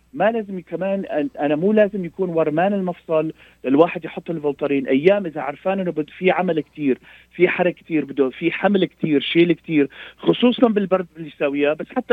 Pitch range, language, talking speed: 145-190 Hz, Arabic, 175 wpm